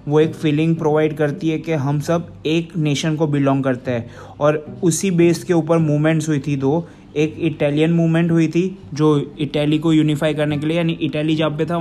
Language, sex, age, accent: Hindi, male, 20-39, native